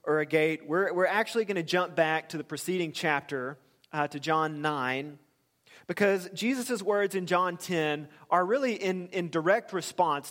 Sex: male